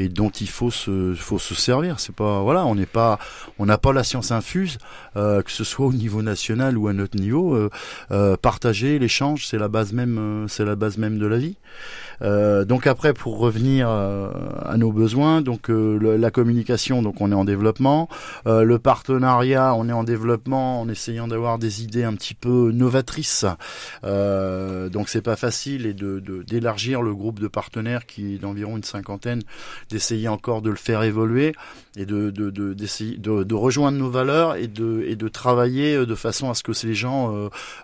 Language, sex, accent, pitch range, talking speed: French, male, French, 100-120 Hz, 195 wpm